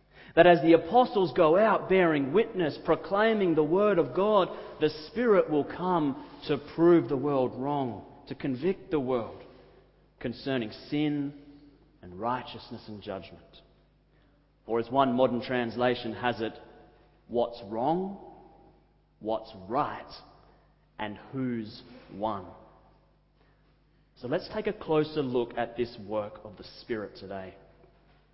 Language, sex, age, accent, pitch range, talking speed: English, male, 30-49, Australian, 125-165 Hz, 125 wpm